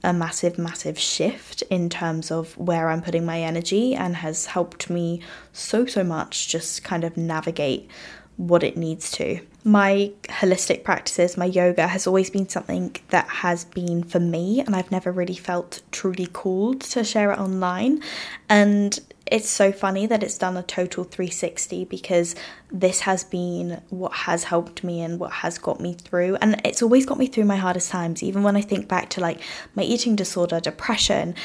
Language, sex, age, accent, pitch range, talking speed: English, female, 10-29, British, 170-195 Hz, 180 wpm